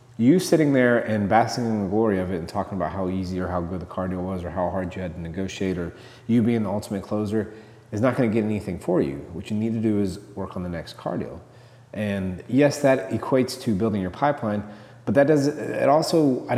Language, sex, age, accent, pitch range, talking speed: English, male, 30-49, American, 95-115 Hz, 250 wpm